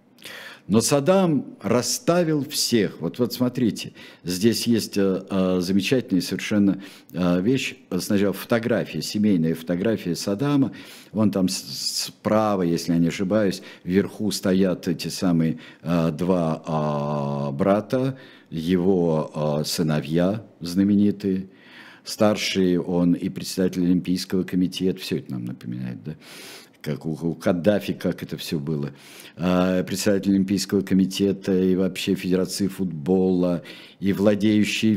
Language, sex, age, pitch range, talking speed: Russian, male, 50-69, 85-110 Hz, 105 wpm